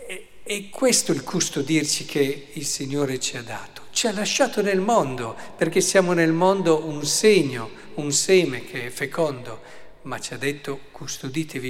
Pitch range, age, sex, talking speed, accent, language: 125-160 Hz, 50-69, male, 165 wpm, native, Italian